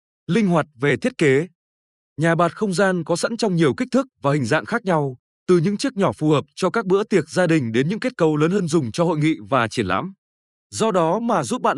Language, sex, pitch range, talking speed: Vietnamese, male, 145-200 Hz, 255 wpm